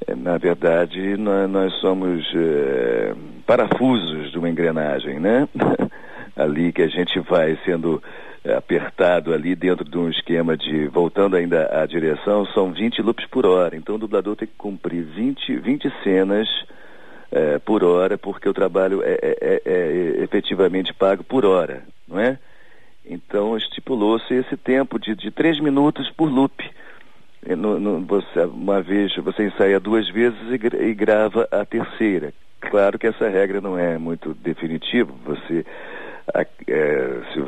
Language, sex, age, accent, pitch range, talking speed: Portuguese, male, 50-69, Brazilian, 90-125 Hz, 145 wpm